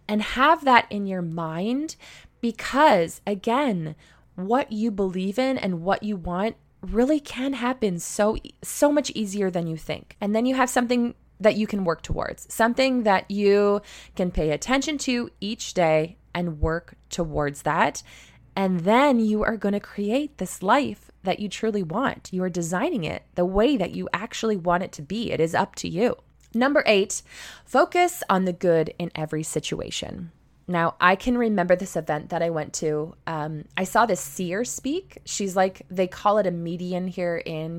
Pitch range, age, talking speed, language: 170-230 Hz, 20-39, 180 wpm, English